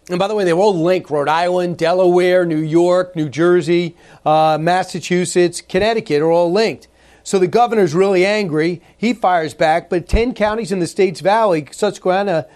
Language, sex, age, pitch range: English, male, 40-59, 170-195 Hz